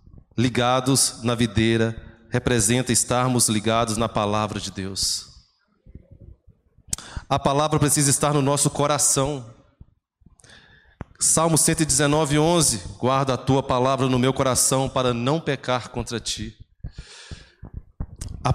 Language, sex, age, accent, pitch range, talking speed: Portuguese, male, 20-39, Brazilian, 120-150 Hz, 105 wpm